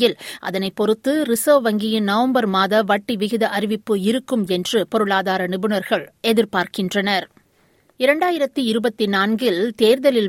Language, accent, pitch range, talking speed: Tamil, native, 190-240 Hz, 100 wpm